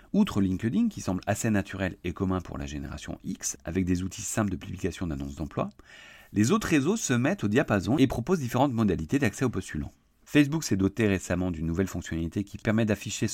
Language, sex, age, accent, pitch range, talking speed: French, male, 40-59, French, 90-115 Hz, 200 wpm